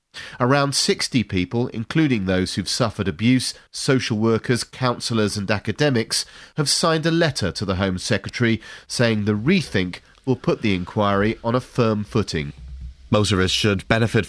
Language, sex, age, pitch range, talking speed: English, male, 30-49, 95-115 Hz, 145 wpm